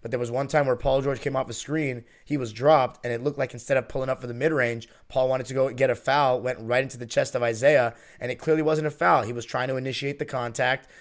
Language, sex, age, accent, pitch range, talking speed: English, male, 20-39, American, 125-155 Hz, 290 wpm